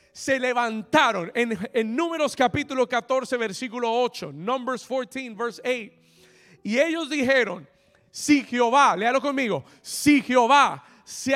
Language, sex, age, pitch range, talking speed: Spanish, male, 30-49, 230-290 Hz, 120 wpm